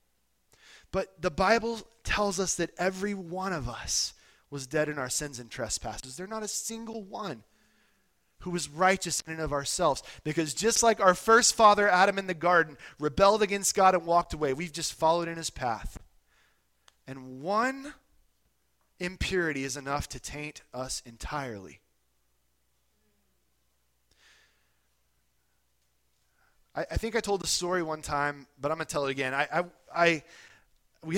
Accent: American